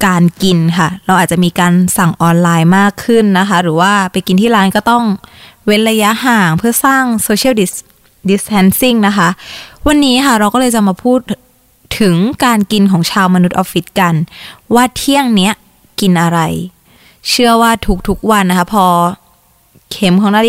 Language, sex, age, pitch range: Thai, female, 20-39, 185-245 Hz